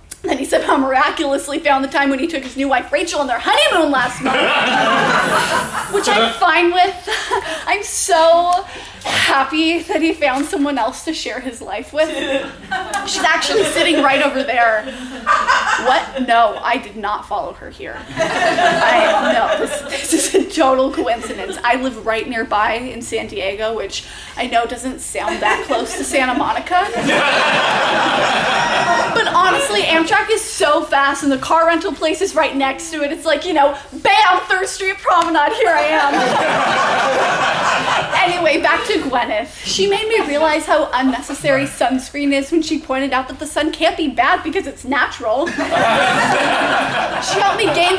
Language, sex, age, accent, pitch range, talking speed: English, female, 20-39, American, 270-345 Hz, 165 wpm